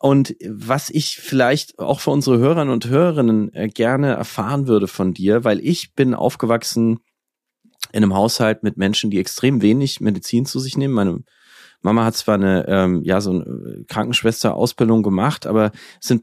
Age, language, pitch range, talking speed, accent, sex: 30-49, German, 110-135 Hz, 165 wpm, German, male